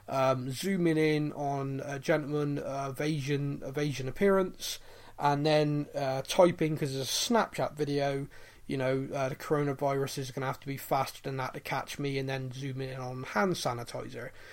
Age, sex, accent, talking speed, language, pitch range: 20-39, male, British, 185 wpm, English, 130-155 Hz